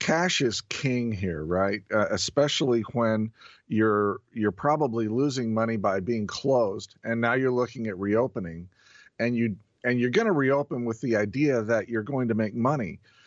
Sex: male